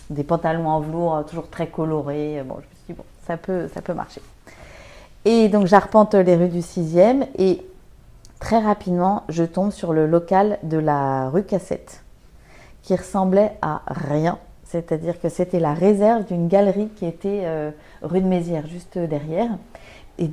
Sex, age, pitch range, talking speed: female, 30-49, 155-195 Hz, 170 wpm